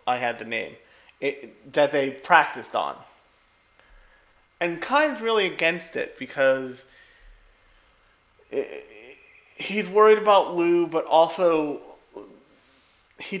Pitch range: 110-180 Hz